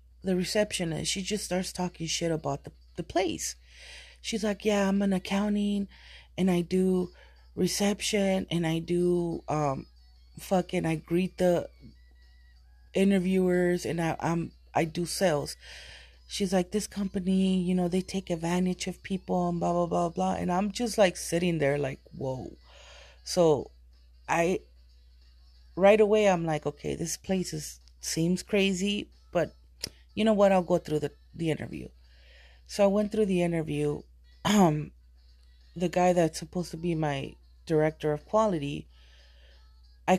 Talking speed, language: 145 wpm, English